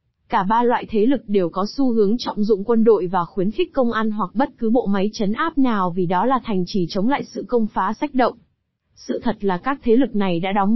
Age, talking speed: 20-39, 260 wpm